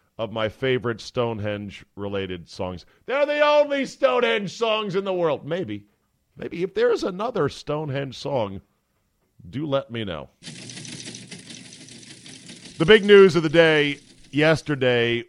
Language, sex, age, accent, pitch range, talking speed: English, male, 50-69, American, 110-175 Hz, 120 wpm